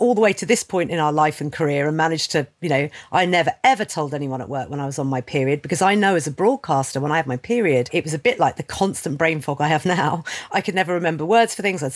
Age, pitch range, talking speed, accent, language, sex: 50-69, 145-185 Hz, 300 wpm, British, English, female